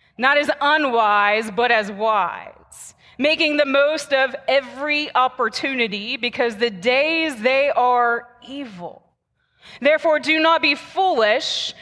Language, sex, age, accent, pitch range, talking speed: English, female, 30-49, American, 200-280 Hz, 115 wpm